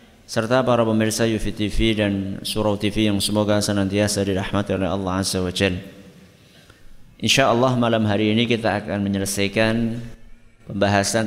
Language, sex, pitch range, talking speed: Indonesian, male, 105-115 Hz, 135 wpm